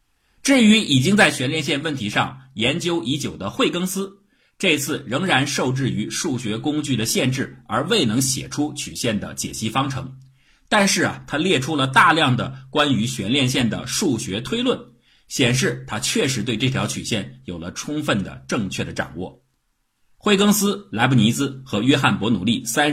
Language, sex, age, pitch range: Chinese, male, 50-69, 125-195 Hz